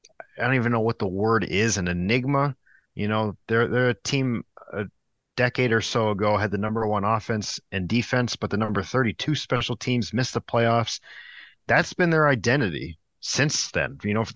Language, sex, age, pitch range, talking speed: English, male, 30-49, 105-130 Hz, 190 wpm